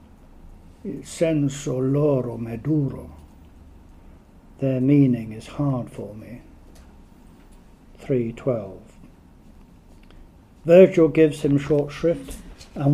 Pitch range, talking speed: 115-160 Hz, 75 wpm